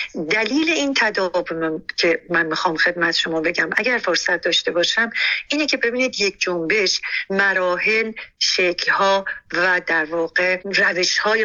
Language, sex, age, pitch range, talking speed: Persian, female, 50-69, 175-235 Hz, 125 wpm